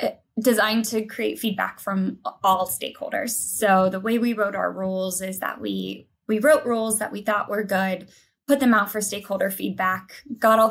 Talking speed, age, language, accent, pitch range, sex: 185 wpm, 20-39, English, American, 195-245 Hz, female